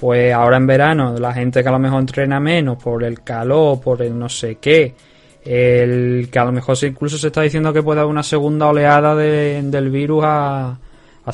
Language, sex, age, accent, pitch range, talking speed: Spanish, male, 20-39, Spanish, 125-150 Hz, 210 wpm